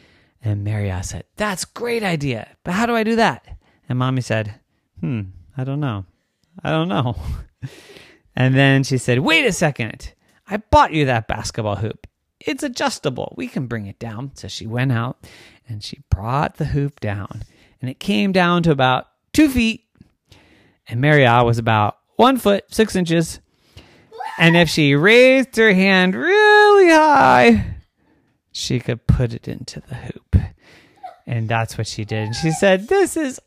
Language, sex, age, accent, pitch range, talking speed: English, male, 30-49, American, 115-195 Hz, 170 wpm